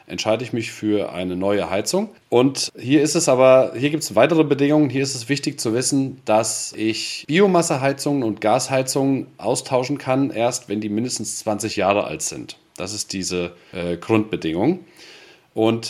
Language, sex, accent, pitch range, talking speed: German, male, German, 110-140 Hz, 165 wpm